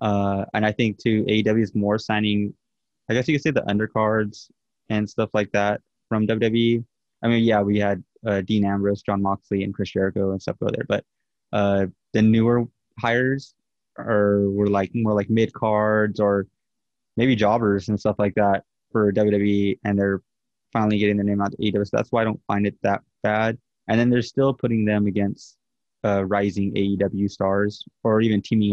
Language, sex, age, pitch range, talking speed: English, male, 20-39, 100-110 Hz, 195 wpm